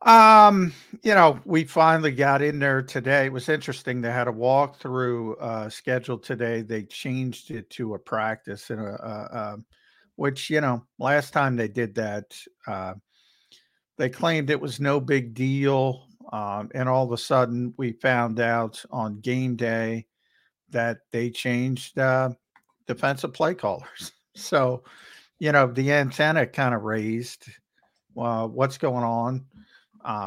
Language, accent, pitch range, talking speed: English, American, 115-135 Hz, 155 wpm